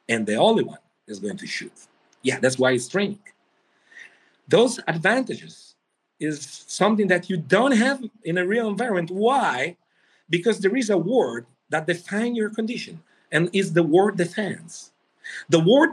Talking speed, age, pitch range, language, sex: 160 wpm, 50-69, 130-200 Hz, English, male